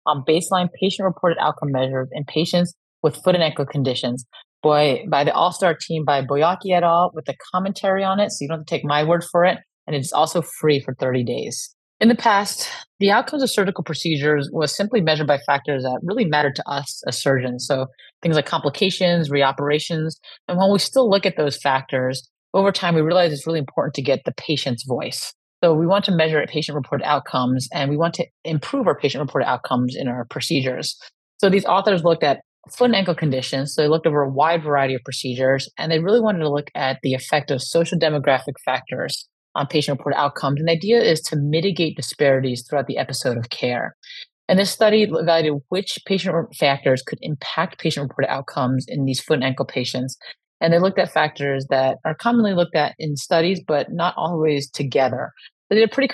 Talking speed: 200 wpm